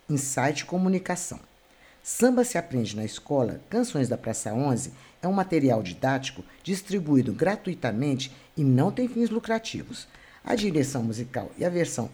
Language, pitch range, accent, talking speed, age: Portuguese, 135-210 Hz, Brazilian, 140 wpm, 50-69